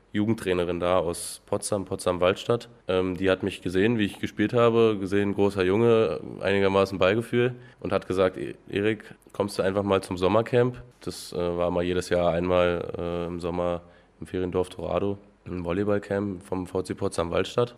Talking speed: 150 wpm